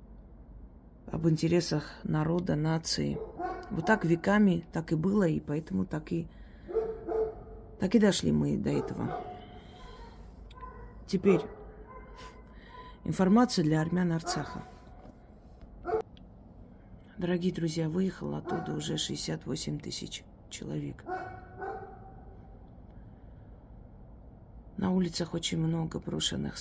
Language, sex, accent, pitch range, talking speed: Russian, female, native, 115-190 Hz, 85 wpm